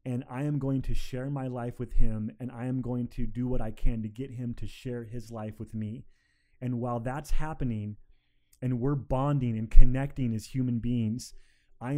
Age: 30-49